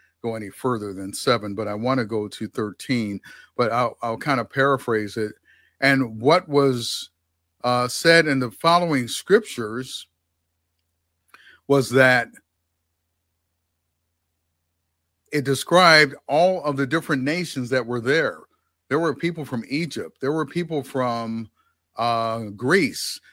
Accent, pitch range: American, 105-145 Hz